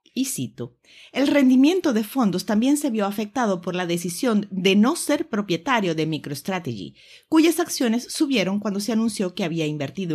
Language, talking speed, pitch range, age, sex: Spanish, 165 wpm, 160-245 Hz, 40-59, female